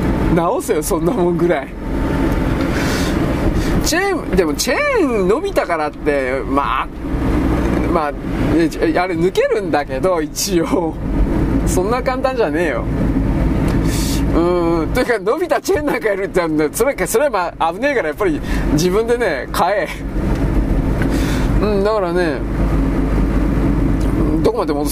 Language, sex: Japanese, male